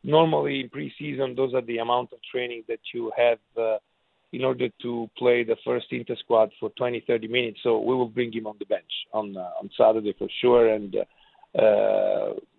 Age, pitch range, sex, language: 40-59, 115-130 Hz, male, English